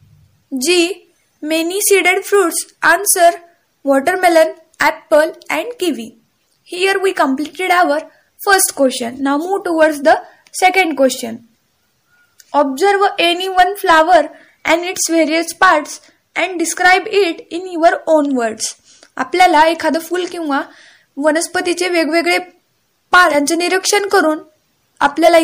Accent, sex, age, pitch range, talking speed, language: native, female, 10-29, 295-360 Hz, 110 wpm, Marathi